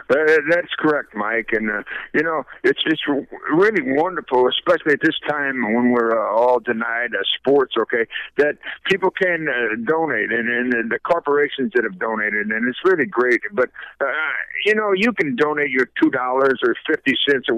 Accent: American